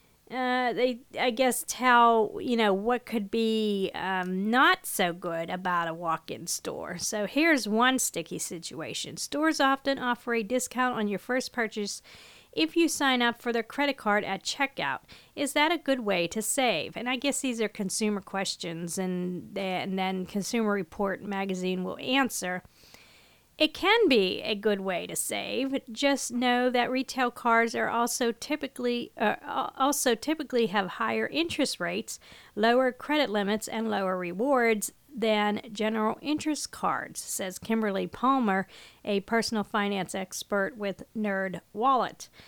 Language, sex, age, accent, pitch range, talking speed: English, female, 40-59, American, 195-255 Hz, 150 wpm